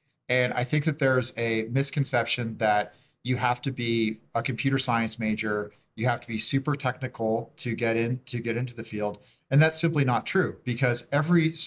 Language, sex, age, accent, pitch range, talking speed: English, male, 30-49, American, 115-140 Hz, 180 wpm